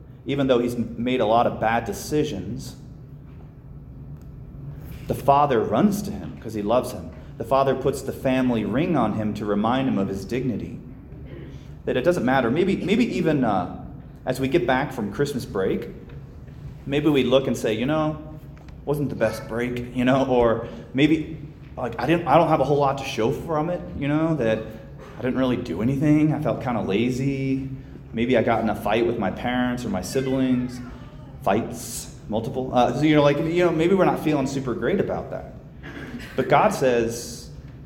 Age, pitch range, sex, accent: 30-49, 120-145 Hz, male, American